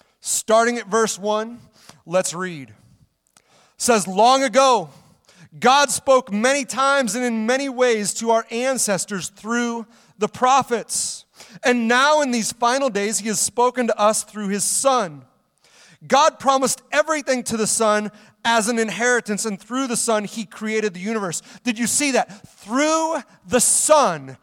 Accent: American